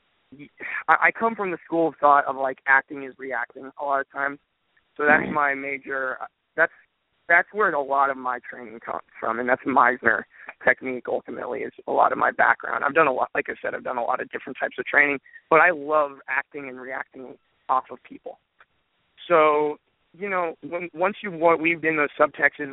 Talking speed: 210 wpm